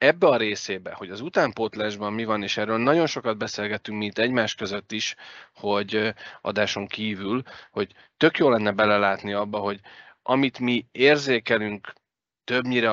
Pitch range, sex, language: 105-125 Hz, male, Hungarian